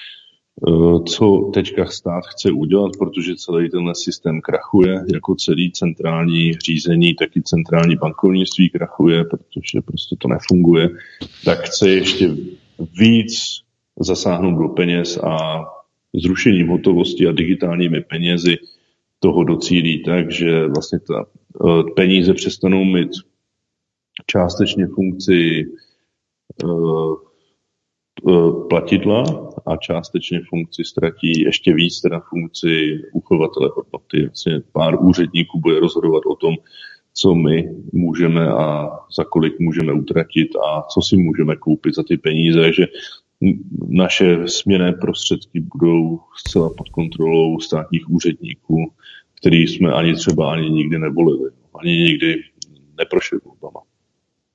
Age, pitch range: 40-59, 80-95 Hz